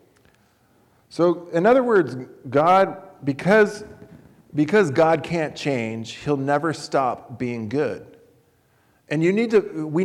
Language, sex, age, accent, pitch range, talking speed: English, male, 40-59, American, 140-185 Hz, 120 wpm